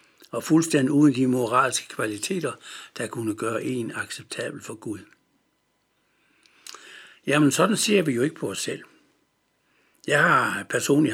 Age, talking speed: 60-79, 135 wpm